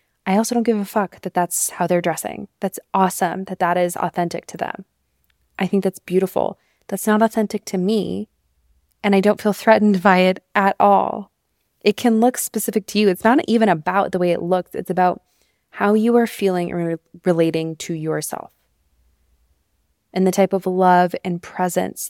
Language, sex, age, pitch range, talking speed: English, female, 20-39, 170-200 Hz, 185 wpm